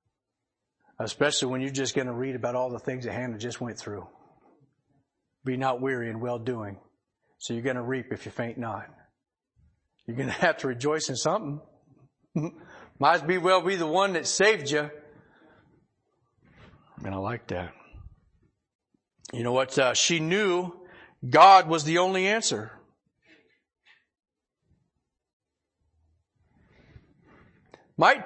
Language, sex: English, male